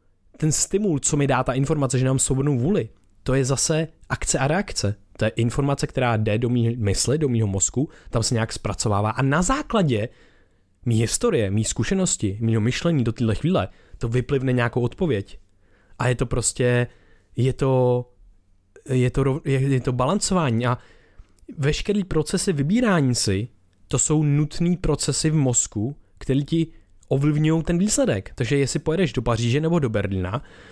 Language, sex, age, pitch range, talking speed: Czech, male, 20-39, 110-150 Hz, 165 wpm